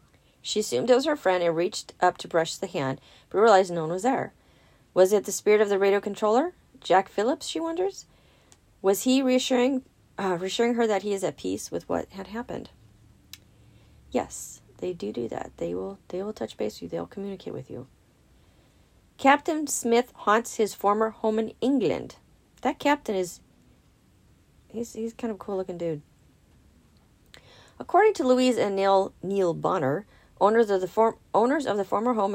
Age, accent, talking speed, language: 40-59, American, 180 wpm, English